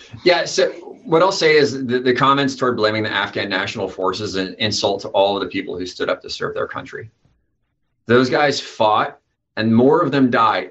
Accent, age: American, 30-49